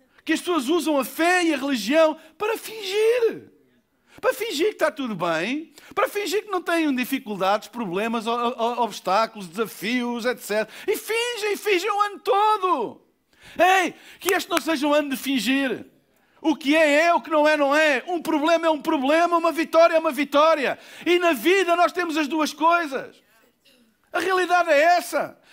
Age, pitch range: 50-69, 245-340 Hz